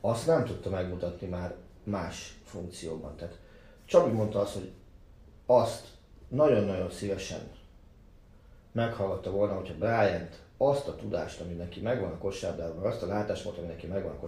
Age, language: 40-59, Hungarian